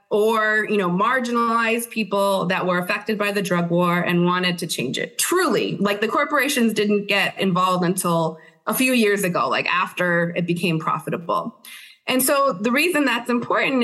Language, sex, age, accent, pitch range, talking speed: English, female, 20-39, American, 185-240 Hz, 175 wpm